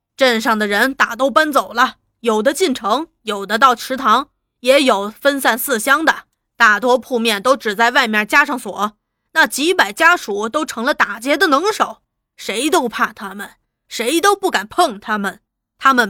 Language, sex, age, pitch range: Chinese, female, 20-39, 205-275 Hz